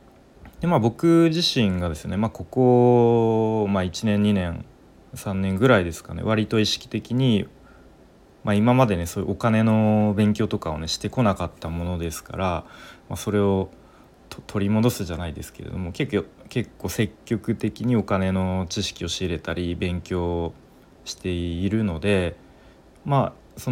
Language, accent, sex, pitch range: Japanese, native, male, 85-115 Hz